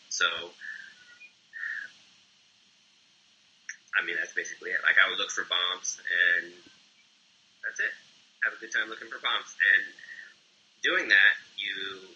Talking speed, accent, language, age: 130 wpm, American, English, 20-39